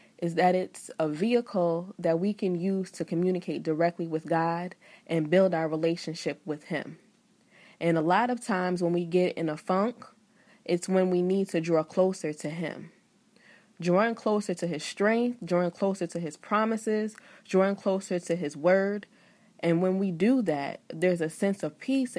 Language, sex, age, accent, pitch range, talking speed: English, female, 20-39, American, 160-205 Hz, 175 wpm